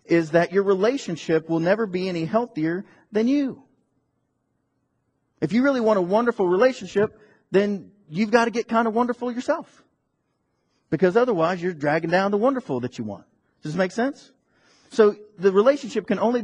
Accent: American